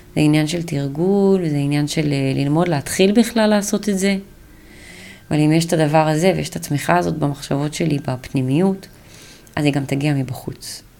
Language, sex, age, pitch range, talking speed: Hebrew, female, 30-49, 140-165 Hz, 170 wpm